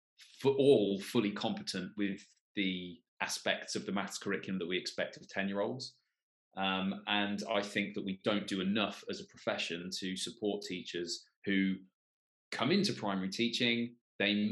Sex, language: male, English